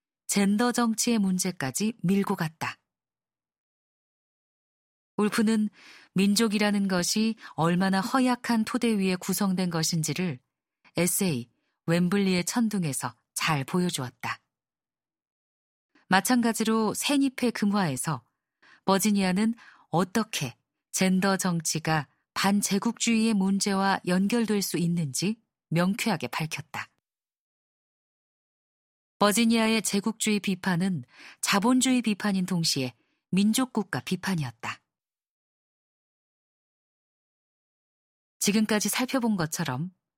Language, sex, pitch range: Korean, female, 165-220 Hz